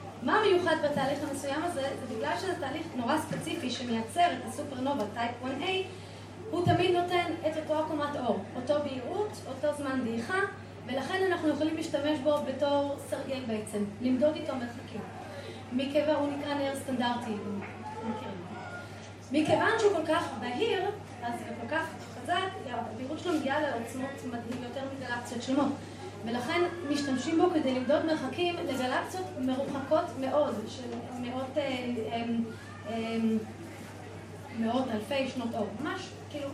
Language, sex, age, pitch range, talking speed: Hebrew, female, 20-39, 250-325 Hz, 120 wpm